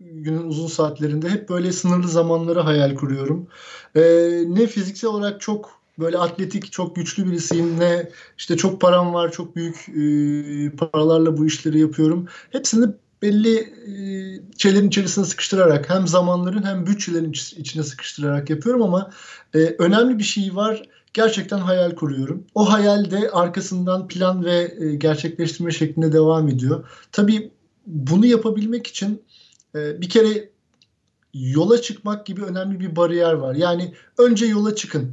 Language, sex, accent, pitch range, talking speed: Turkish, male, native, 165-215 Hz, 140 wpm